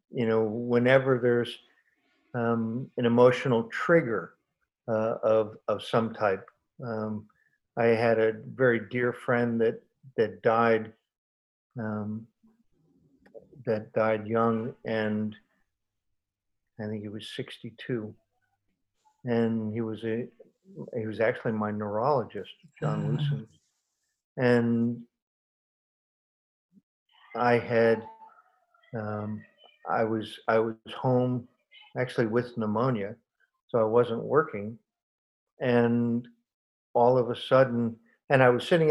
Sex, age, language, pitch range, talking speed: male, 50-69, English, 110-130 Hz, 110 wpm